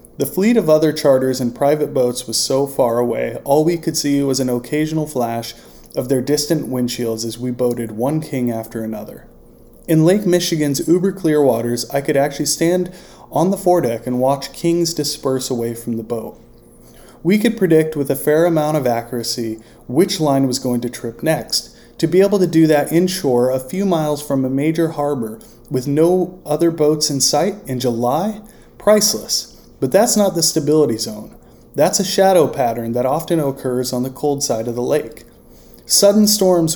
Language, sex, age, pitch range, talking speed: English, male, 20-39, 125-165 Hz, 185 wpm